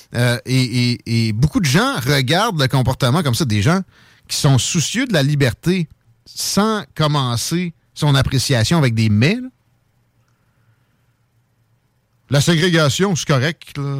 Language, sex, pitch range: French, male, 115-165 Hz